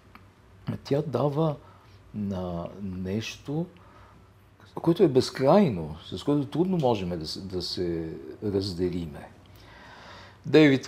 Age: 50-69